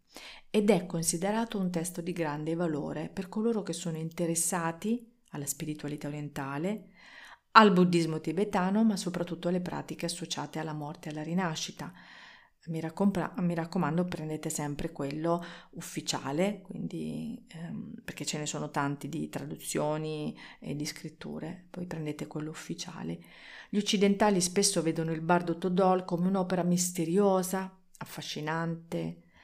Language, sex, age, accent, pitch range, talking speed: Italian, female, 40-59, native, 155-190 Hz, 130 wpm